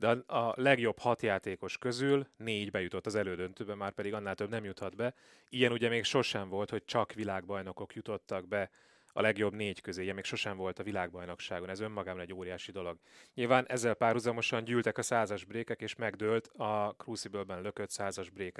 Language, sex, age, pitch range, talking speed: Hungarian, male, 30-49, 95-120 Hz, 175 wpm